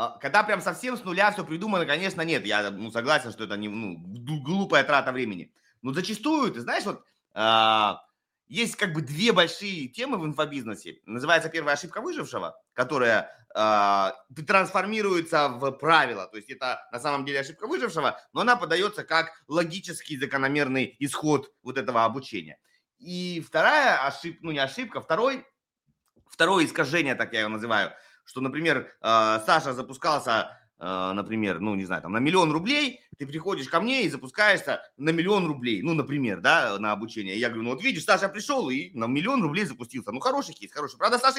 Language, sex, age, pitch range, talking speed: Russian, male, 30-49, 125-190 Hz, 175 wpm